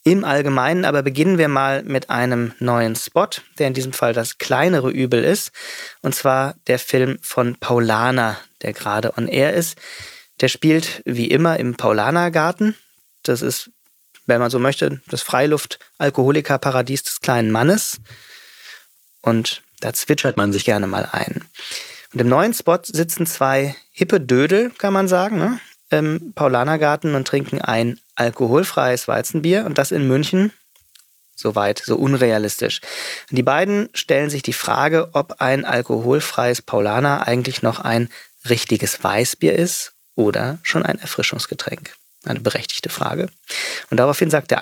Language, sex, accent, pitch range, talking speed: German, male, German, 120-165 Hz, 145 wpm